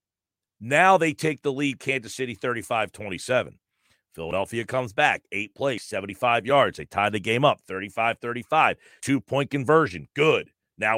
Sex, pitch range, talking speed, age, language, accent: male, 115-150 Hz, 135 wpm, 50-69, English, American